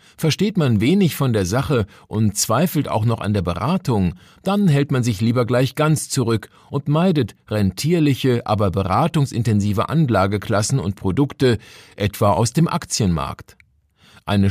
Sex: male